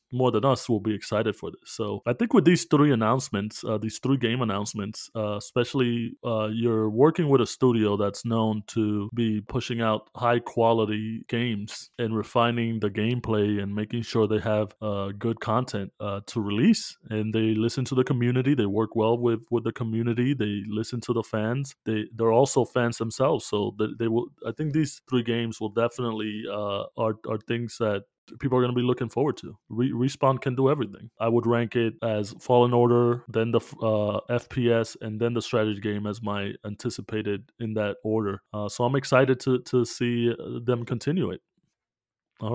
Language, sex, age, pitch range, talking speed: English, male, 20-39, 110-125 Hz, 195 wpm